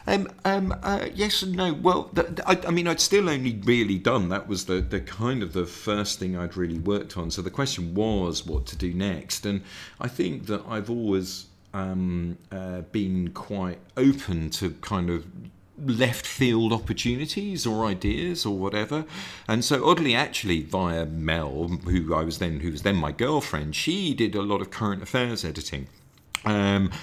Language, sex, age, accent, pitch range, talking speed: English, male, 40-59, British, 85-115 Hz, 180 wpm